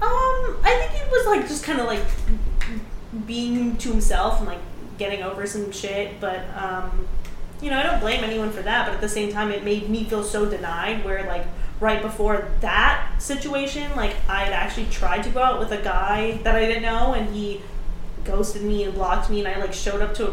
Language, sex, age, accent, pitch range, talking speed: English, female, 20-39, American, 205-250 Hz, 220 wpm